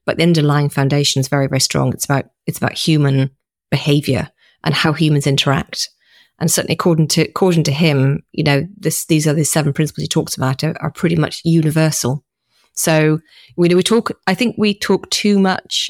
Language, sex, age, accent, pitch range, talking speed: English, female, 30-49, British, 150-180 Hz, 195 wpm